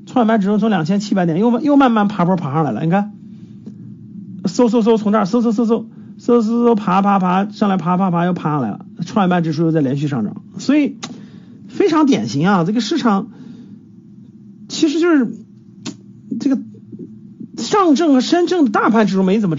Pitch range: 190-230 Hz